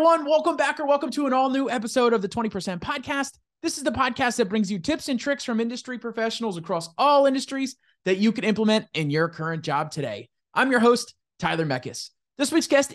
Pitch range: 175-260 Hz